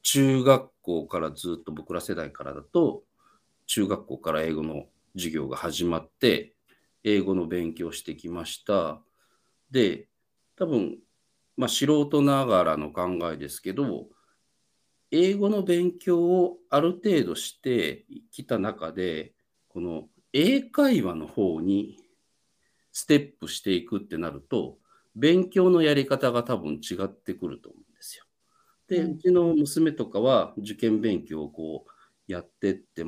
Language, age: English, 50-69